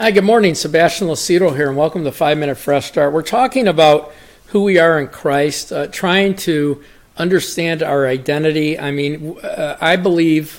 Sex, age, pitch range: male, 50-69, 140-170 Hz